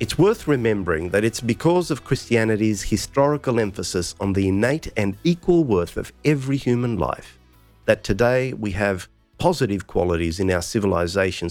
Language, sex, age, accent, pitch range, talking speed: English, male, 50-69, Australian, 95-135 Hz, 150 wpm